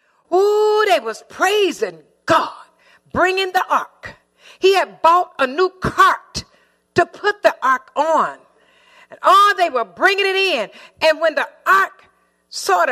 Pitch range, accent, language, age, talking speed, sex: 300-380 Hz, American, English, 50-69, 150 wpm, female